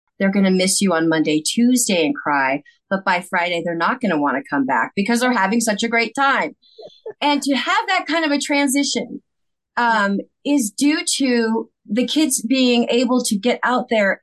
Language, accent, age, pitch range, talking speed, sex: English, American, 30-49, 190-250 Hz, 205 wpm, female